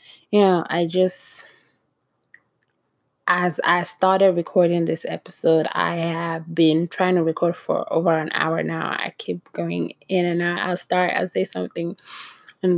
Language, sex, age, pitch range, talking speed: English, female, 20-39, 165-190 Hz, 155 wpm